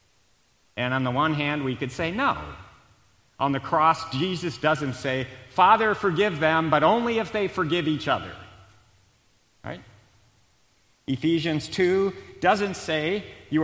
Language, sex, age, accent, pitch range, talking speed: English, male, 50-69, American, 100-155 Hz, 135 wpm